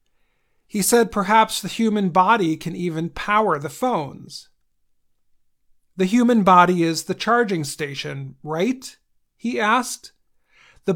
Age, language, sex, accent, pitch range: 40-59, Chinese, male, American, 160-210 Hz